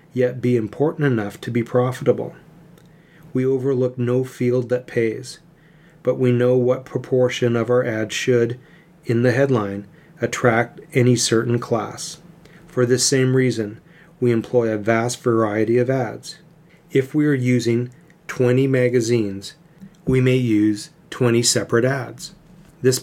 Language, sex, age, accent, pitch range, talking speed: English, male, 40-59, American, 120-160 Hz, 140 wpm